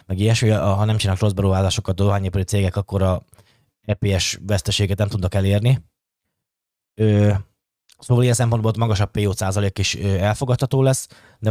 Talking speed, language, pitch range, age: 135 wpm, Hungarian, 95-120 Hz, 20-39